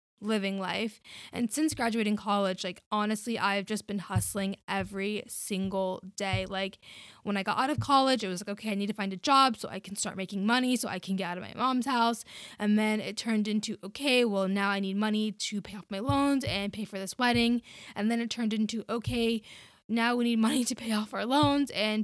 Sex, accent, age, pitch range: female, American, 10-29, 200-235 Hz